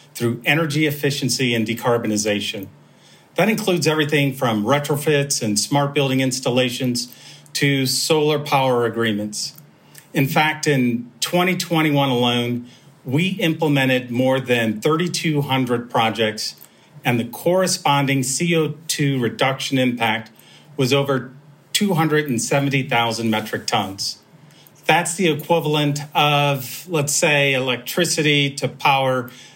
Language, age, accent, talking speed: English, 40-59, American, 100 wpm